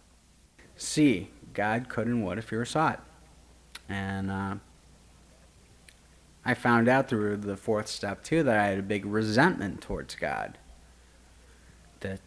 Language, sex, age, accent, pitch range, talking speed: English, male, 30-49, American, 80-105 Hz, 135 wpm